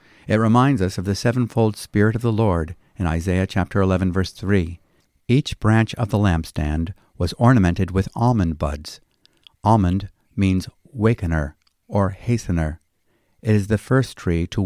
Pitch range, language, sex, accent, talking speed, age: 85-110 Hz, English, male, American, 145 wpm, 50-69